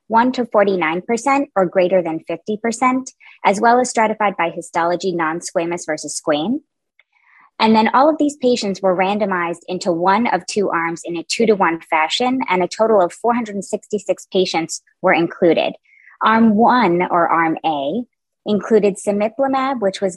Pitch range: 175-225 Hz